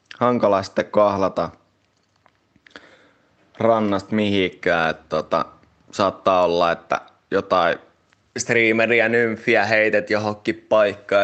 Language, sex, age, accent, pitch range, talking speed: Finnish, male, 20-39, native, 95-115 Hz, 85 wpm